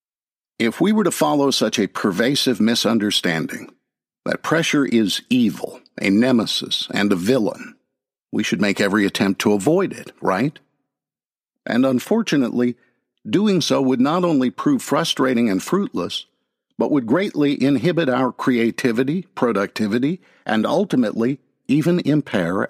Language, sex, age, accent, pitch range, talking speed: English, male, 50-69, American, 120-155 Hz, 130 wpm